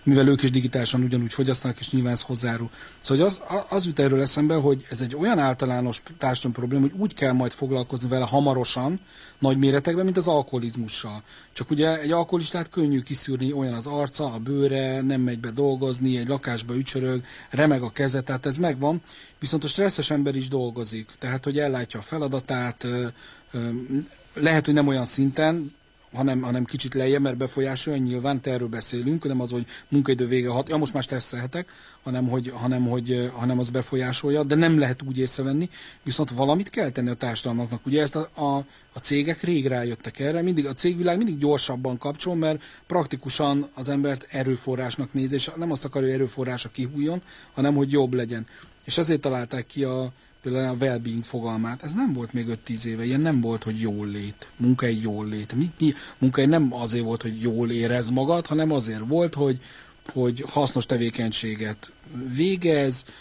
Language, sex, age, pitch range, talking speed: Hungarian, male, 40-59, 125-145 Hz, 175 wpm